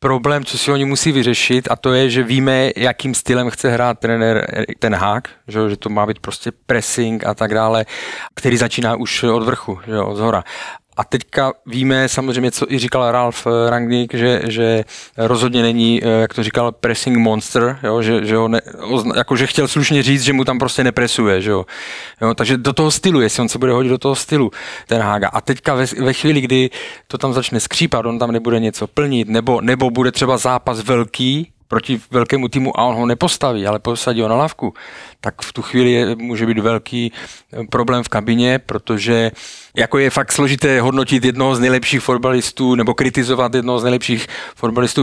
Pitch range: 115-130 Hz